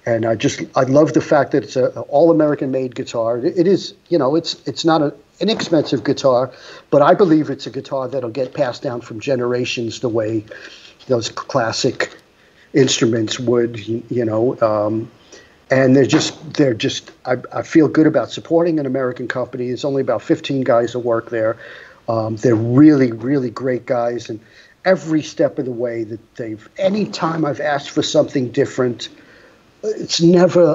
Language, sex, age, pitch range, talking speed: English, male, 50-69, 120-150 Hz, 175 wpm